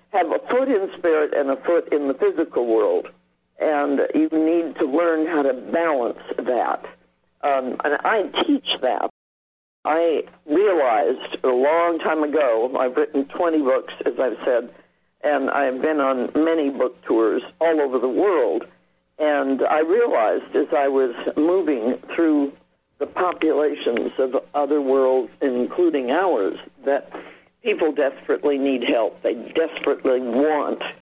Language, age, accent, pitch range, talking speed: English, 60-79, American, 130-170 Hz, 140 wpm